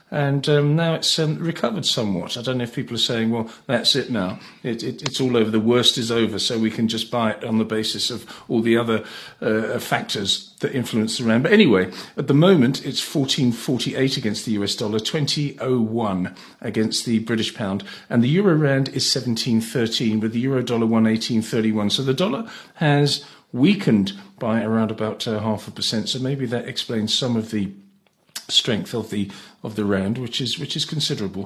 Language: English